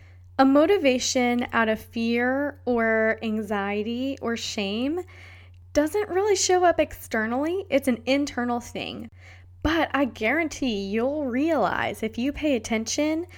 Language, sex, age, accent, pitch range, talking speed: English, female, 10-29, American, 195-265 Hz, 120 wpm